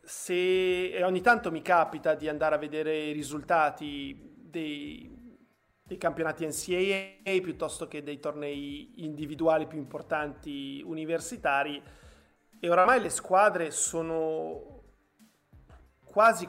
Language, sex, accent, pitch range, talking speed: Italian, male, native, 155-185 Hz, 105 wpm